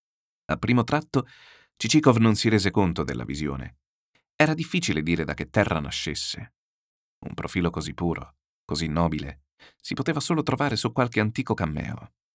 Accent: native